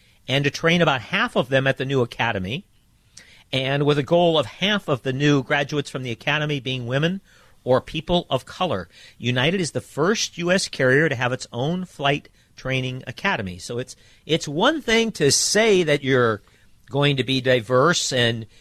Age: 50-69